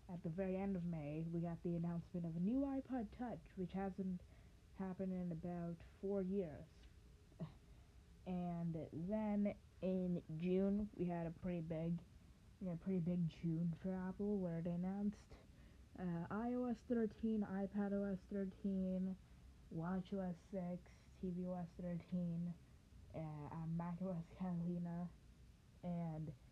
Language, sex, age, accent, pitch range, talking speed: English, female, 20-39, American, 165-190 Hz, 135 wpm